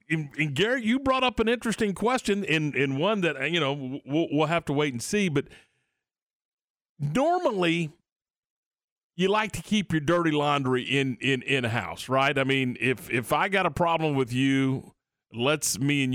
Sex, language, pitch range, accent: male, English, 135-180 Hz, American